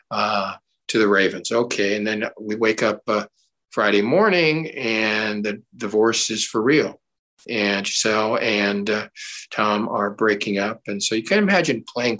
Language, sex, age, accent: English, male, 50-69, American